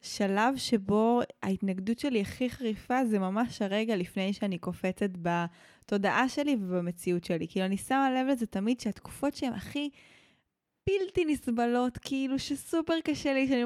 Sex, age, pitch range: female, 20-39, 200-270 Hz